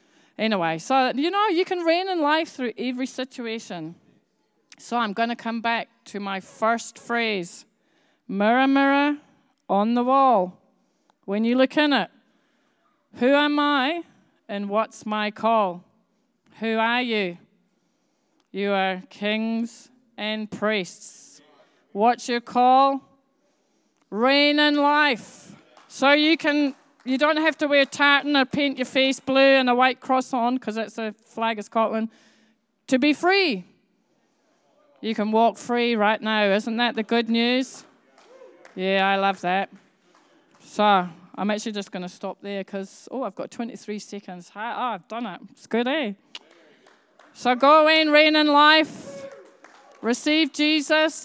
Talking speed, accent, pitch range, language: 150 wpm, British, 215-285 Hz, English